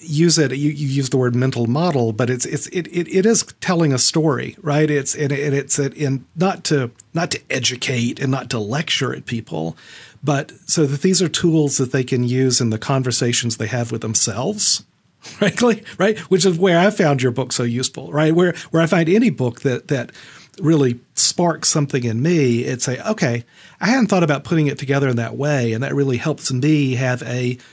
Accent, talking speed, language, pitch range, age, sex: American, 210 wpm, English, 125-165 Hz, 40-59, male